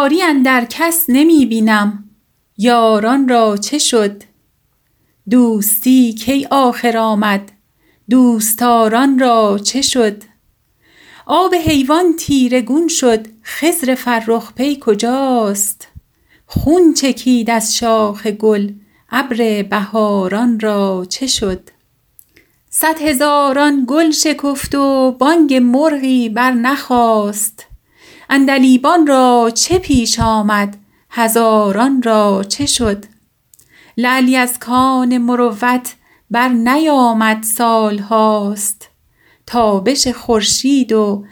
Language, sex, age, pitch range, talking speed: Persian, female, 40-59, 220-270 Hz, 90 wpm